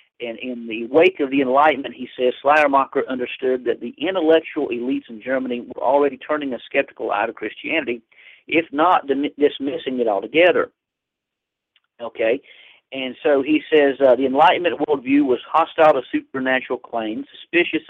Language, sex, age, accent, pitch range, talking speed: English, male, 50-69, American, 125-160 Hz, 150 wpm